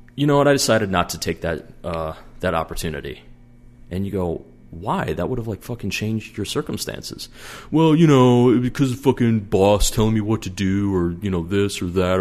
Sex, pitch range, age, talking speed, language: male, 80-100 Hz, 30-49, 205 wpm, English